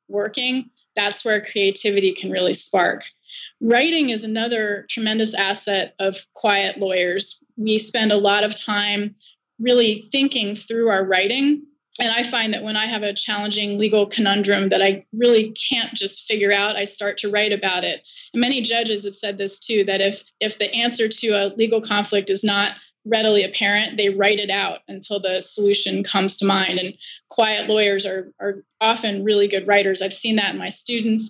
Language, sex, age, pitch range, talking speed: English, female, 20-39, 200-235 Hz, 180 wpm